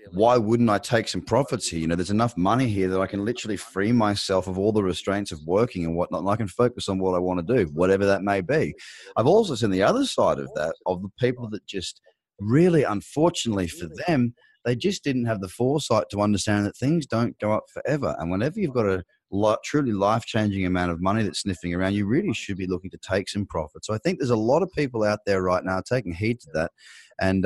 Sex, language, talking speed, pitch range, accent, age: male, English, 245 wpm, 90-115 Hz, Australian, 30-49